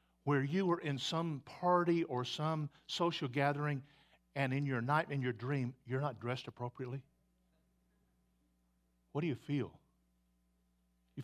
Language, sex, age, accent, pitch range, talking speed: English, male, 50-69, American, 120-195 Hz, 140 wpm